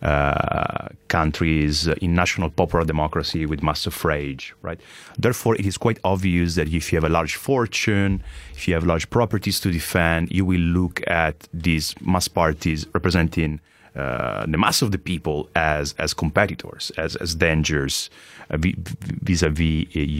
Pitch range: 75-90 Hz